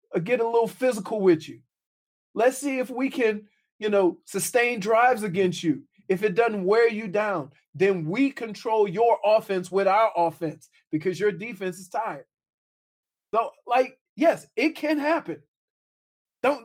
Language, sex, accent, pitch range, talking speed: English, male, American, 195-280 Hz, 155 wpm